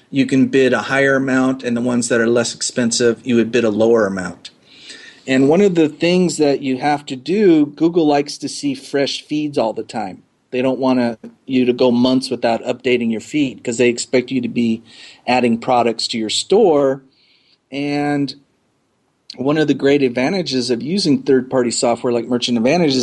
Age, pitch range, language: 40-59, 125-145 Hz, English